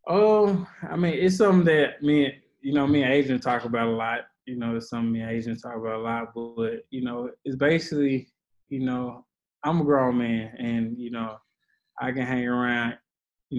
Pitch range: 115-125 Hz